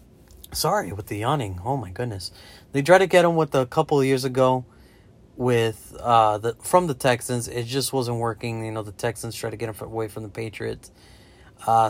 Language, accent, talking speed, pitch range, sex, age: English, American, 210 wpm, 110-130 Hz, male, 30-49